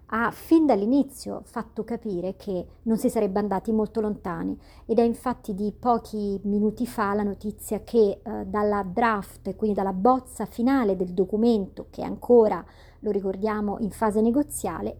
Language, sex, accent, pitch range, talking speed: Italian, male, native, 205-250 Hz, 155 wpm